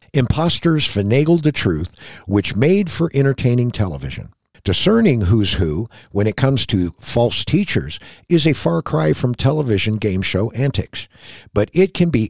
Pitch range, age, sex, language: 100-145 Hz, 60-79, male, English